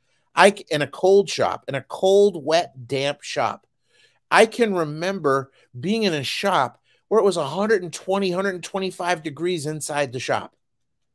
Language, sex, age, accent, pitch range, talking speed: English, male, 50-69, American, 140-205 Hz, 140 wpm